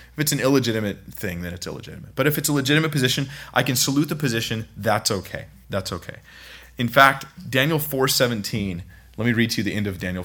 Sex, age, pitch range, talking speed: male, 30-49, 95-135 Hz, 210 wpm